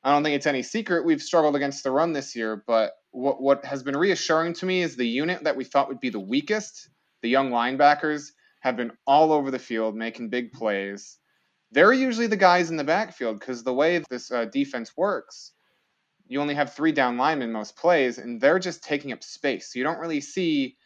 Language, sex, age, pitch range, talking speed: English, male, 20-39, 115-145 Hz, 220 wpm